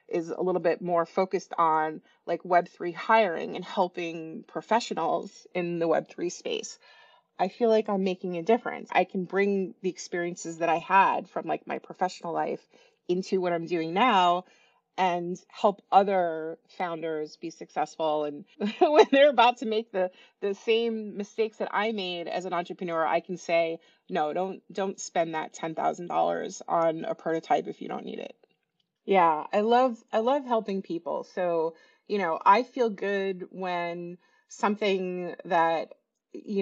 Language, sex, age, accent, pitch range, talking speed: English, female, 30-49, American, 170-205 Hz, 165 wpm